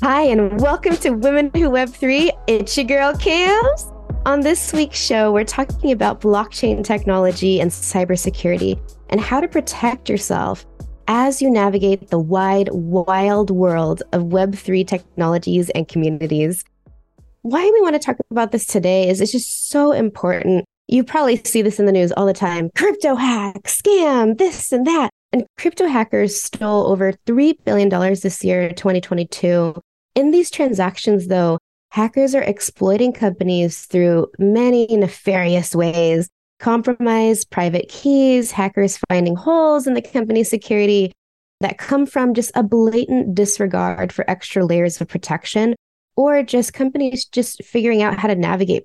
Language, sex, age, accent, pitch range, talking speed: English, female, 20-39, American, 180-250 Hz, 150 wpm